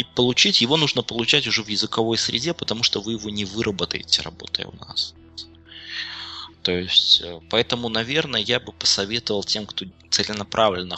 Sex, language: male, English